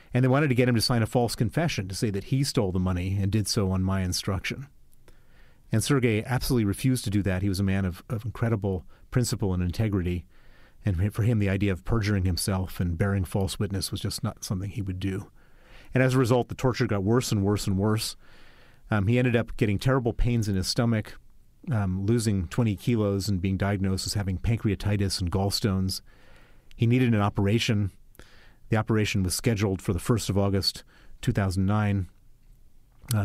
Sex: male